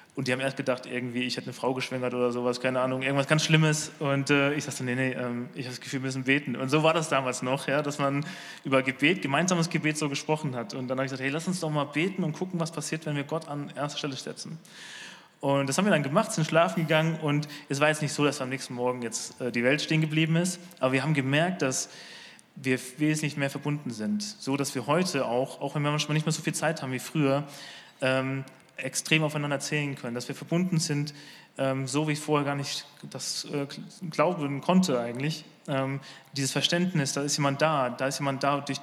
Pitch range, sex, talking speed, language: 135-155 Hz, male, 245 wpm, German